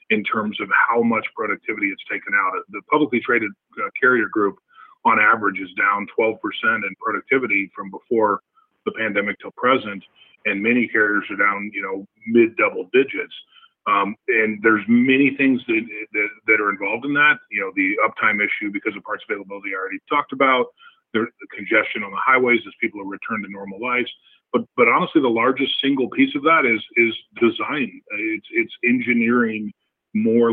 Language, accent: English, American